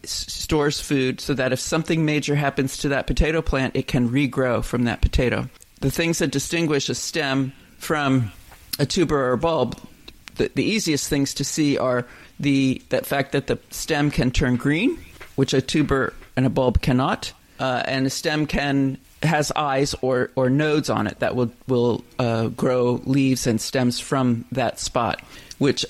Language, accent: English, American